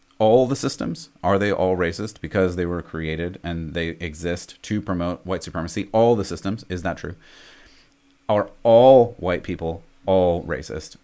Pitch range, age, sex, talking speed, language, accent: 90-115 Hz, 30-49, male, 165 wpm, English, American